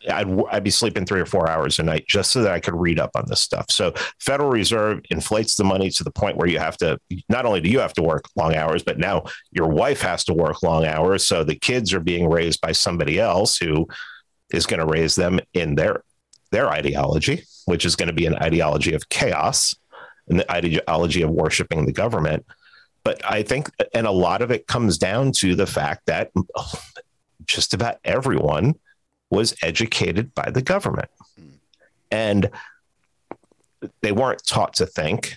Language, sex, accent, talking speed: English, male, American, 195 wpm